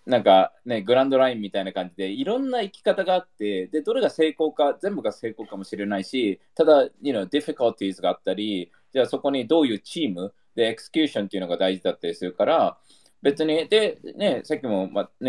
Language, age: Japanese, 20-39